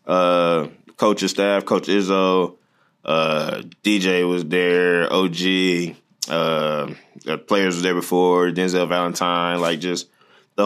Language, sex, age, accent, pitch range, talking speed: German, male, 20-39, American, 85-90 Hz, 120 wpm